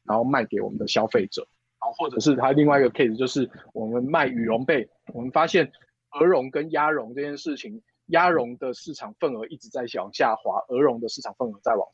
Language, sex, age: Chinese, male, 20-39